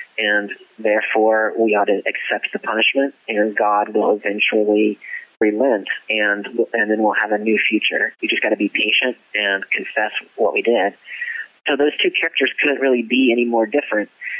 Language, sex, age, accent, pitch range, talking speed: English, male, 30-49, American, 105-125 Hz, 180 wpm